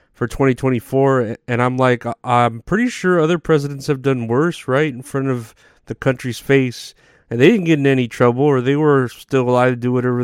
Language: English